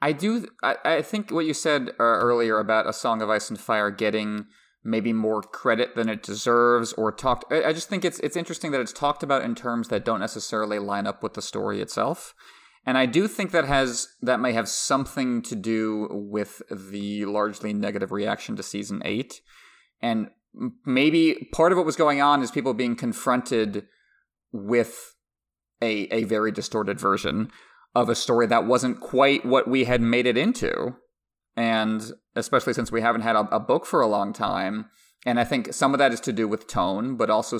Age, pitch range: 20-39, 110-140 Hz